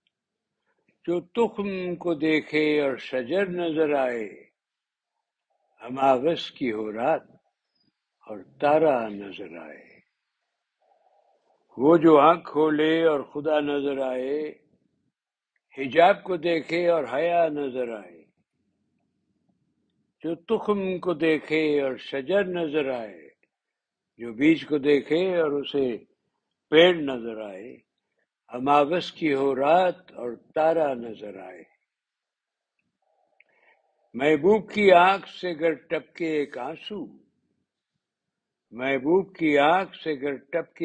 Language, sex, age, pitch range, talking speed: Urdu, male, 60-79, 135-175 Hz, 95 wpm